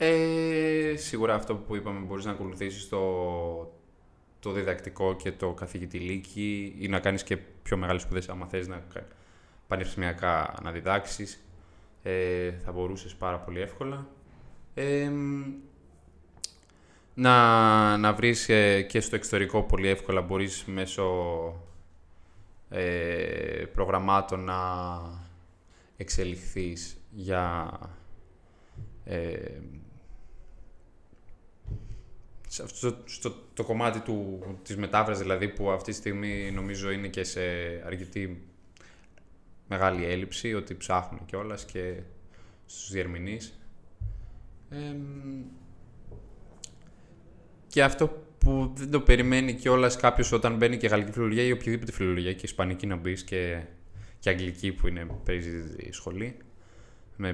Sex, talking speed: male, 105 wpm